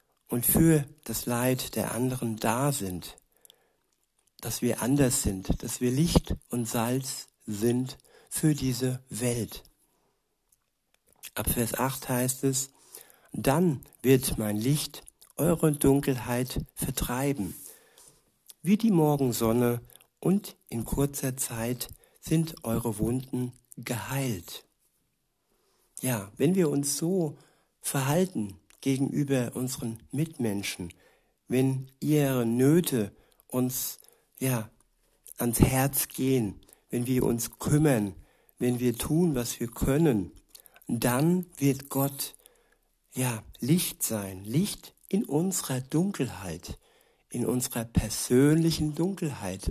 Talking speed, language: 105 wpm, German